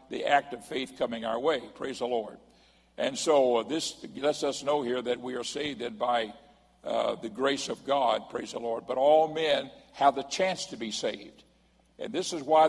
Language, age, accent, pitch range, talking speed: English, 60-79, American, 125-160 Hz, 210 wpm